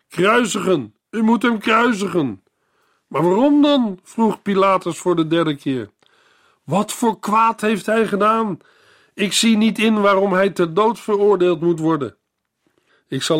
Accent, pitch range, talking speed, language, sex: Dutch, 120-185 Hz, 150 wpm, Dutch, male